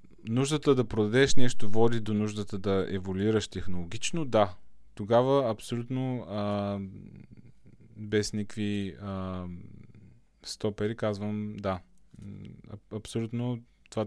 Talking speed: 95 wpm